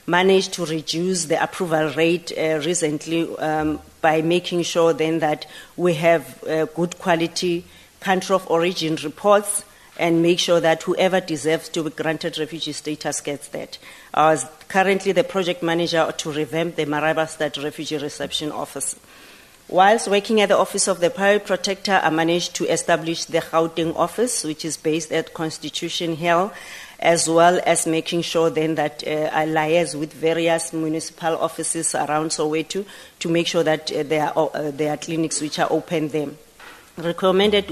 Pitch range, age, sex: 155-180 Hz, 40-59, female